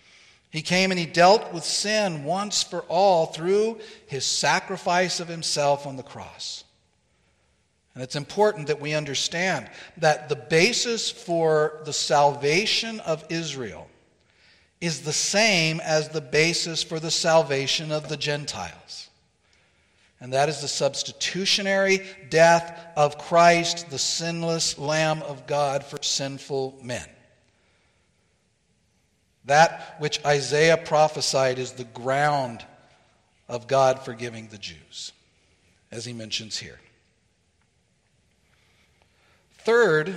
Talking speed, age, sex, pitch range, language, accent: 115 wpm, 50-69, male, 135-175 Hz, English, American